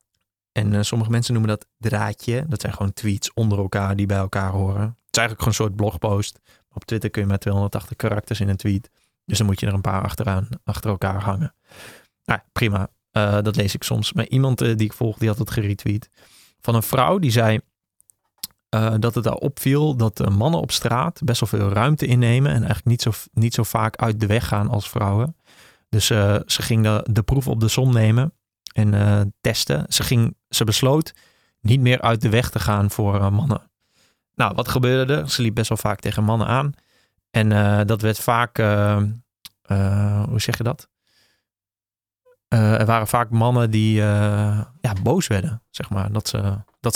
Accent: Dutch